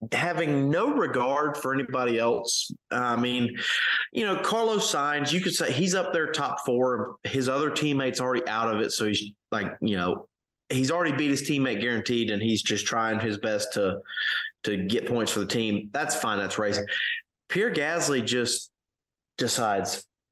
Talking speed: 175 wpm